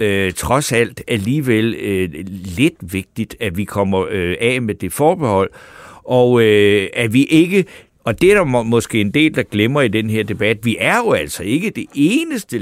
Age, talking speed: 60-79, 190 wpm